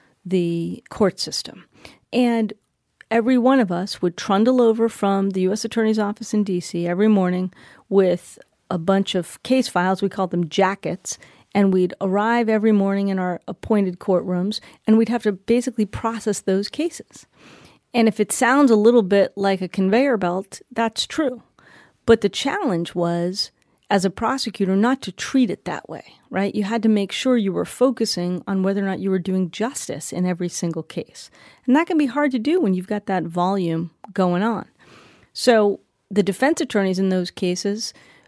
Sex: female